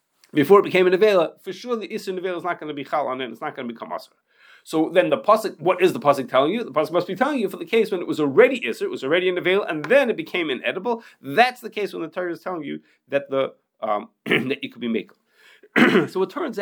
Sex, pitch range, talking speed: male, 165-240 Hz, 280 wpm